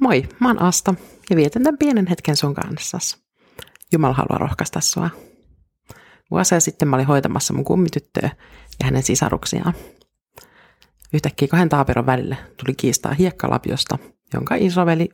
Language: Finnish